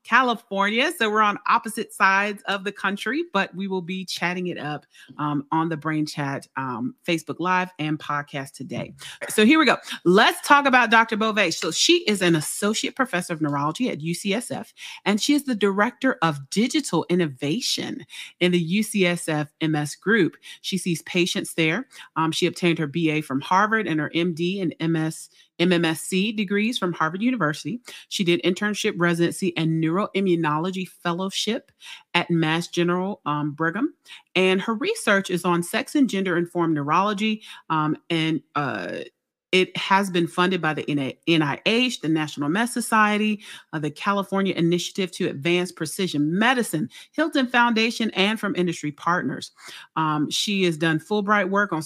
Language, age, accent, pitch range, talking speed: English, 30-49, American, 160-215 Hz, 155 wpm